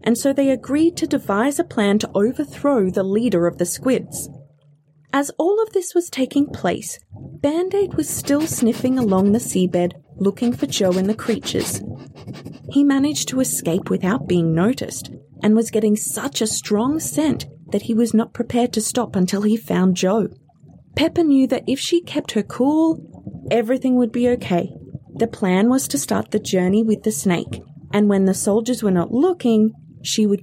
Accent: Australian